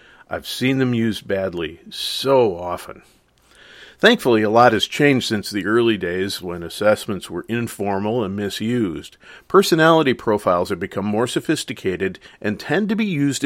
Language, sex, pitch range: English, male, 100-130 Hz